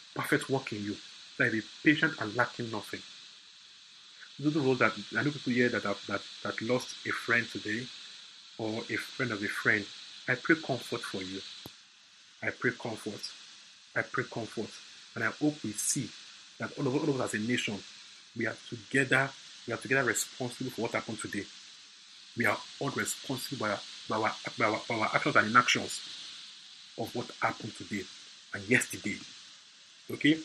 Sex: male